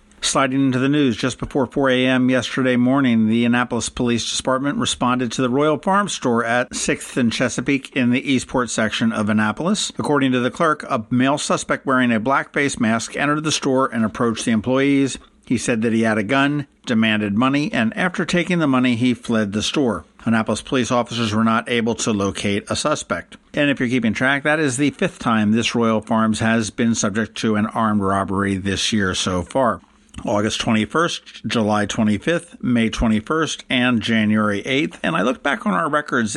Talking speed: 195 wpm